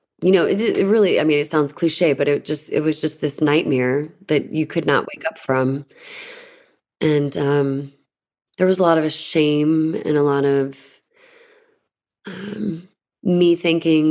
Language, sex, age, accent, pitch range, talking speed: English, female, 20-39, American, 140-165 Hz, 170 wpm